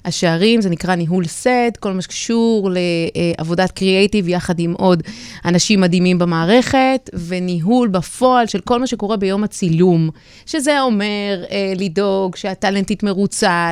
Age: 30-49